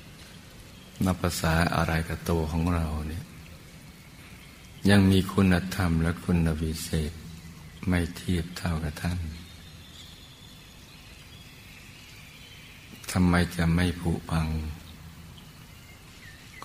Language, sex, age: Thai, male, 60-79